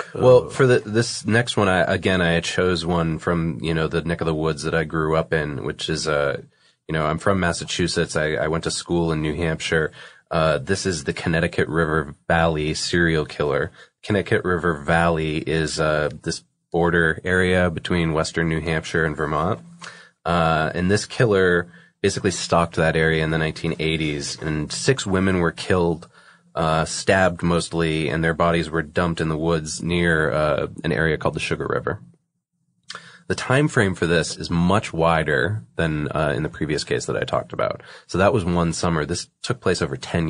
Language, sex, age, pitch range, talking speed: English, male, 30-49, 80-90 Hz, 190 wpm